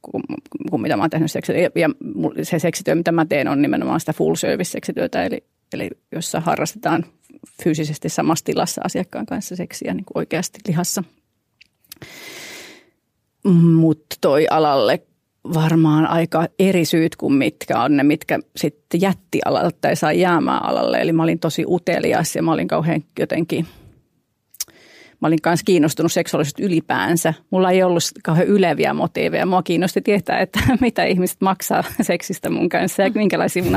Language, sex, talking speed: Finnish, female, 145 wpm